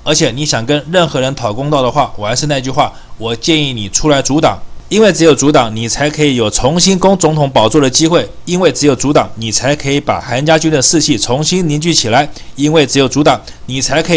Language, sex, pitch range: Chinese, male, 125-155 Hz